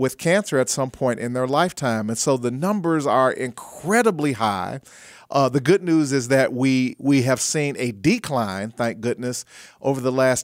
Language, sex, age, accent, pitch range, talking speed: English, male, 40-59, American, 125-160 Hz, 185 wpm